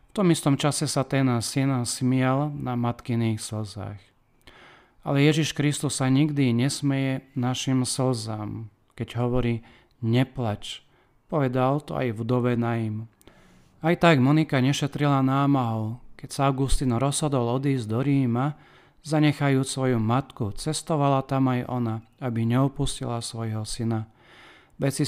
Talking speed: 125 wpm